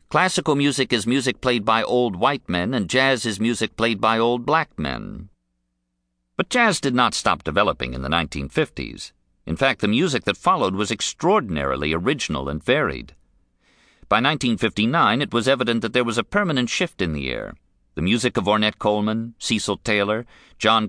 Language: English